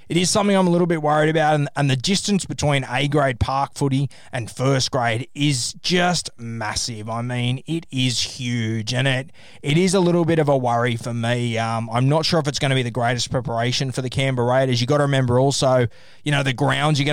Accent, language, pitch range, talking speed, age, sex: Australian, English, 125-150 Hz, 230 wpm, 20-39, male